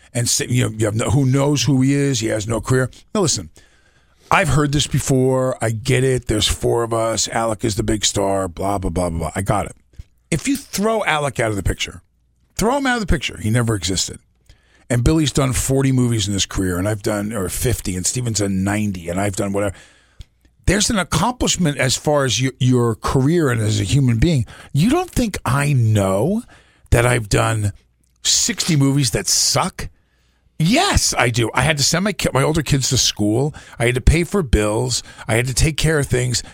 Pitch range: 110-160 Hz